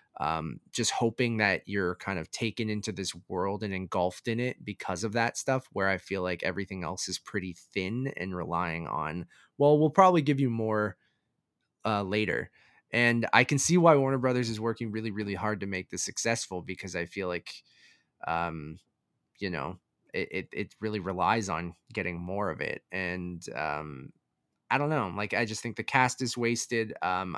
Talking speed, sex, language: 190 wpm, male, English